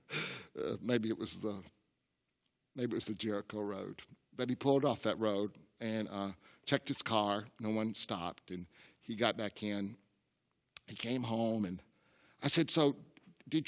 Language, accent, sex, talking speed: English, American, male, 165 wpm